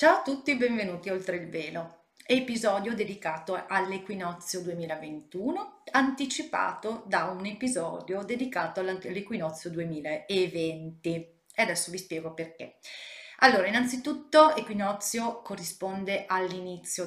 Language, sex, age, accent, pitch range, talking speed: Italian, female, 40-59, native, 165-220 Hz, 105 wpm